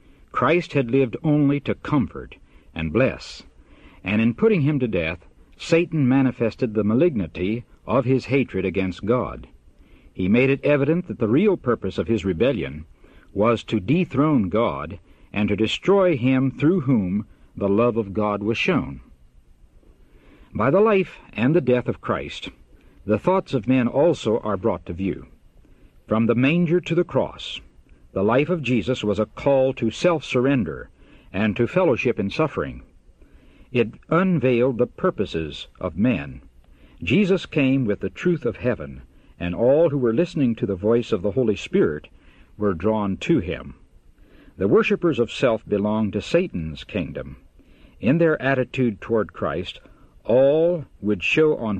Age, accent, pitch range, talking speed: 60-79, American, 85-135 Hz, 155 wpm